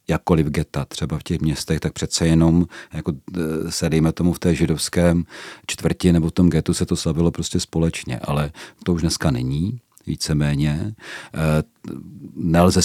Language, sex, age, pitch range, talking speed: Czech, male, 40-59, 80-90 Hz, 155 wpm